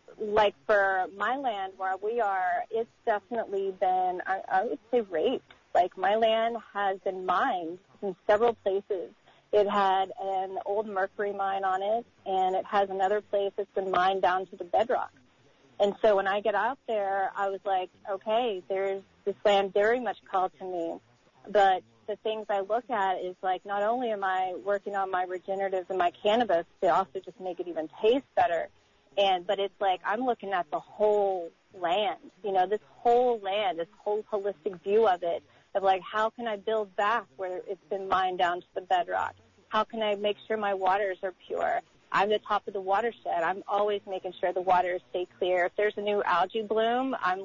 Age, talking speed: 30-49, 200 wpm